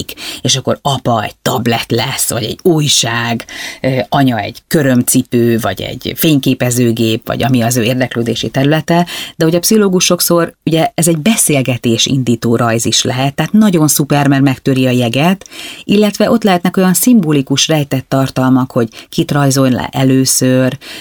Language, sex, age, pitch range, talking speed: Hungarian, female, 30-49, 125-155 Hz, 150 wpm